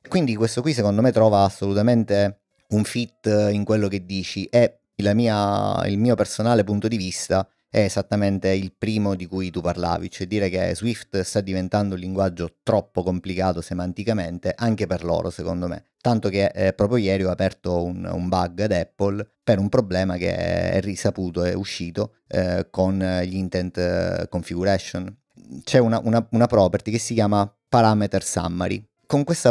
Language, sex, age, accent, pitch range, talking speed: Italian, male, 30-49, native, 95-110 Hz, 160 wpm